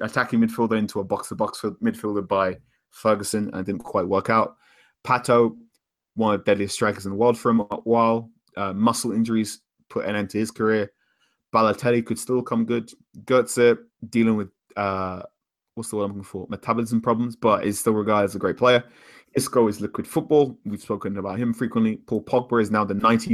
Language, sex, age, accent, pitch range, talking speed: English, male, 20-39, British, 105-120 Hz, 195 wpm